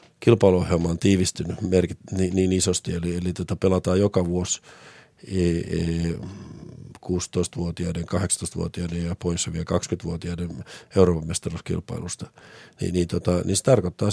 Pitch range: 90-115 Hz